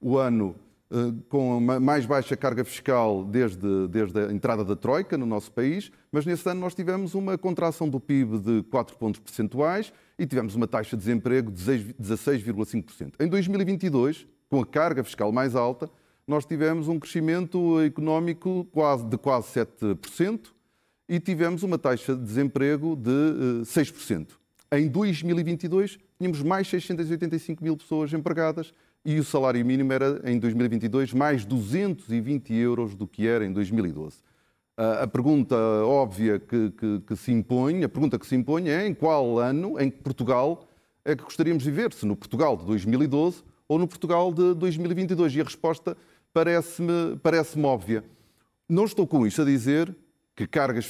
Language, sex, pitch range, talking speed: Portuguese, male, 120-165 Hz, 155 wpm